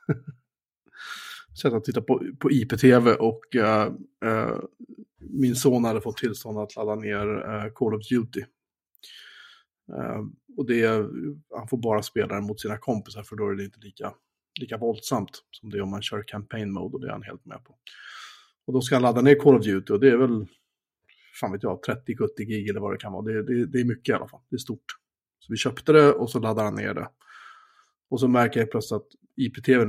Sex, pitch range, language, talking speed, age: male, 105-130 Hz, Swedish, 205 wpm, 30-49